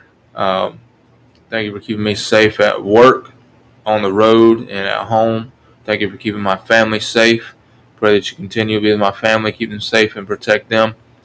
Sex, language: male, English